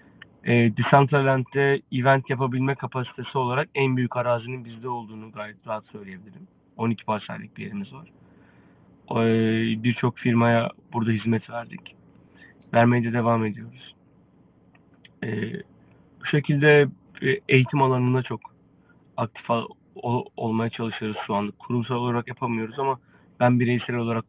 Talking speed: 120 wpm